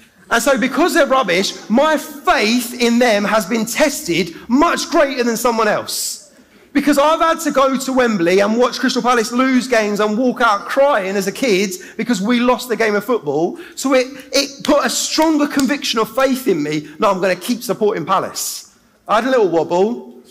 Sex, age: male, 30-49